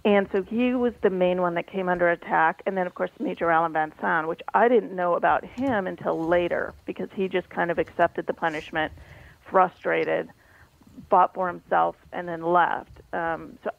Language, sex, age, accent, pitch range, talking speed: English, female, 40-59, American, 165-190 Hz, 190 wpm